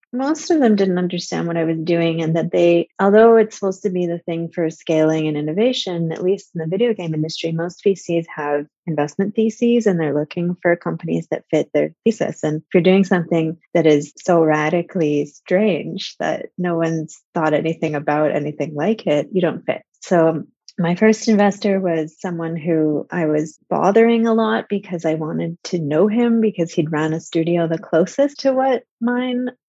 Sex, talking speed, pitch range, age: female, 190 wpm, 165-205 Hz, 30-49